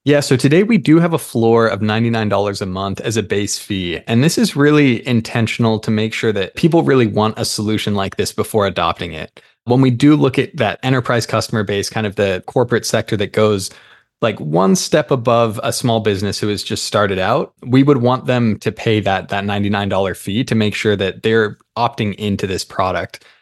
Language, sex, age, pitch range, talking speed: English, male, 20-39, 105-130 Hz, 210 wpm